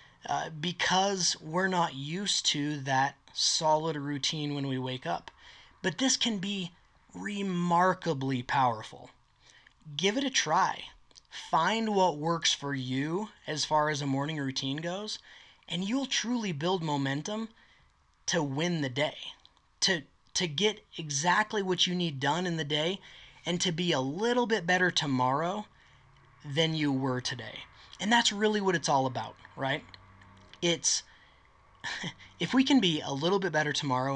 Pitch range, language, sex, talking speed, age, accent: 135-185 Hz, English, male, 150 wpm, 20-39, American